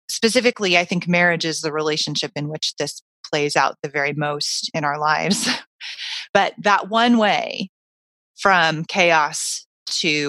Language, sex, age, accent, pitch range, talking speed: English, female, 30-49, American, 155-190 Hz, 145 wpm